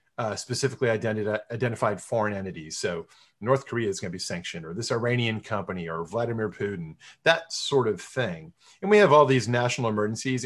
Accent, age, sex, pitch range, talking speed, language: American, 40-59, male, 115-145 Hz, 190 wpm, English